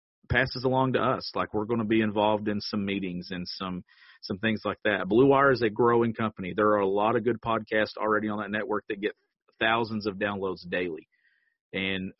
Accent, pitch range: American, 100-120 Hz